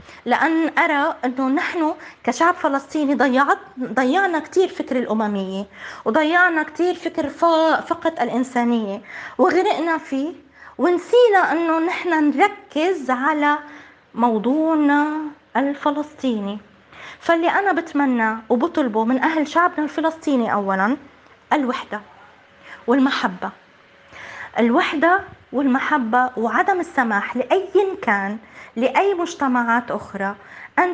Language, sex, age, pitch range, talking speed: Arabic, female, 20-39, 235-330 Hz, 90 wpm